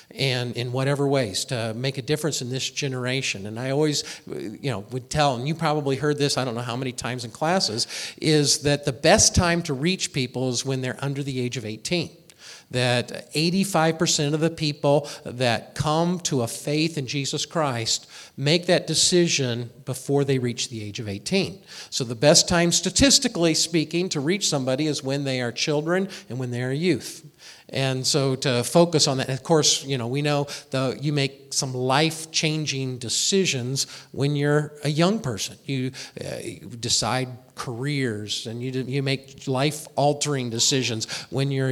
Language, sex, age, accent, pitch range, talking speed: English, male, 50-69, American, 130-155 Hz, 180 wpm